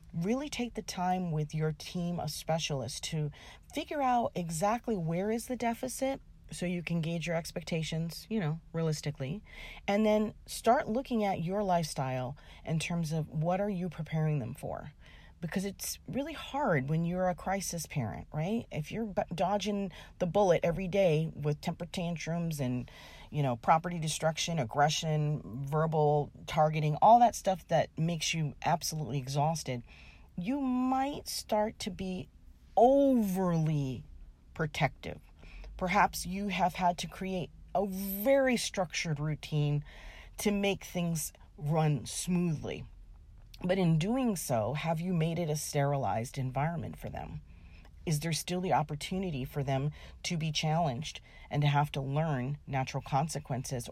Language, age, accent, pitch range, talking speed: English, 40-59, American, 140-185 Hz, 145 wpm